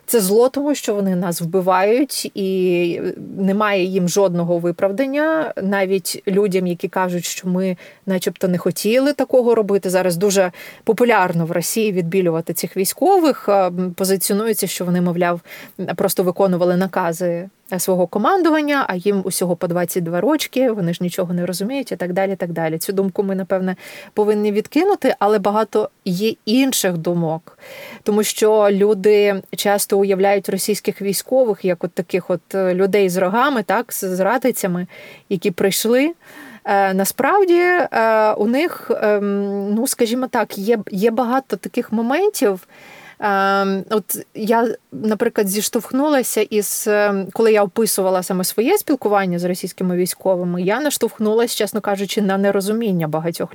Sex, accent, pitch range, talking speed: female, native, 185-225 Hz, 135 wpm